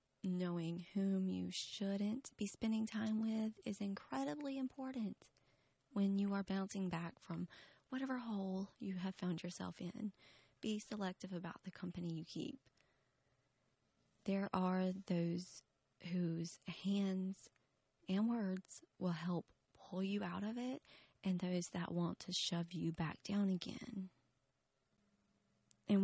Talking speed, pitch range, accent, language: 130 wpm, 175-205 Hz, American, English